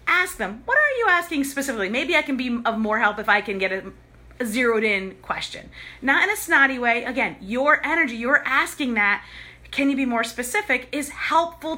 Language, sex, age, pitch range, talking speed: English, female, 30-49, 215-335 Hz, 205 wpm